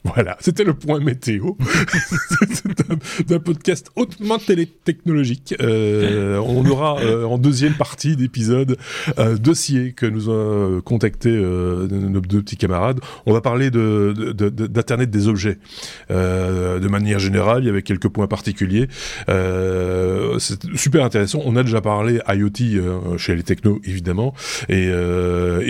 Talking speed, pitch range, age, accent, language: 145 wpm, 100-130 Hz, 30-49, French, French